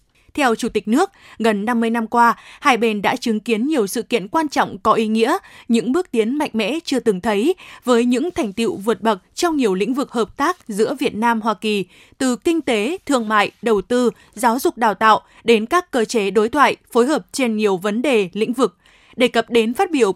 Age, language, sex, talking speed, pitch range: 20-39, Vietnamese, female, 225 wpm, 220-275 Hz